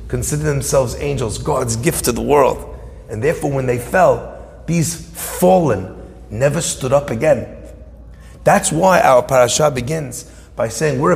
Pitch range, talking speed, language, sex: 115-155 Hz, 145 wpm, English, male